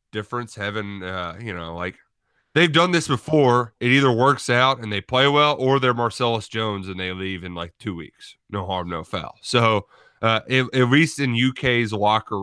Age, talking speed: 30-49, 200 wpm